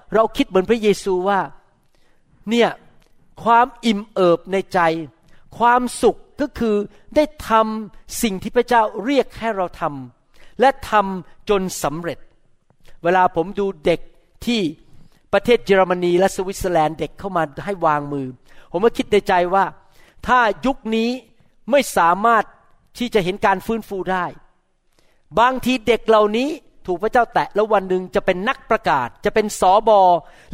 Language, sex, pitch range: Thai, male, 180-235 Hz